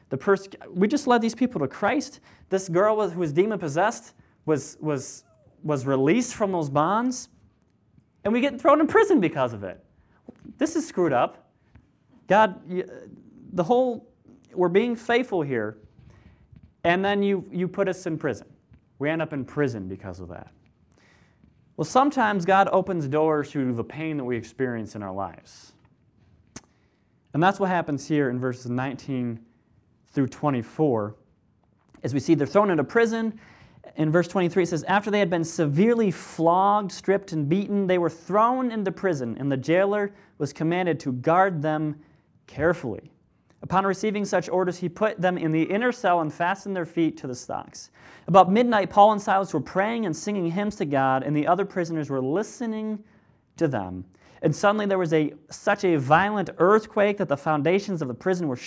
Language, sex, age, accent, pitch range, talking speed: English, male, 30-49, American, 145-205 Hz, 175 wpm